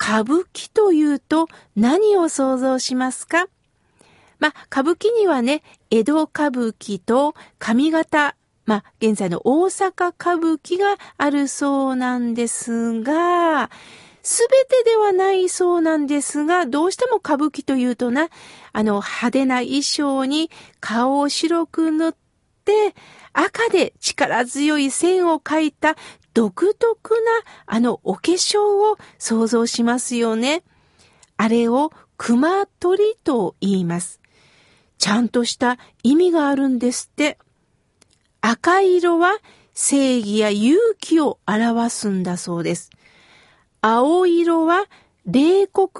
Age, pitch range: 50-69, 240-360 Hz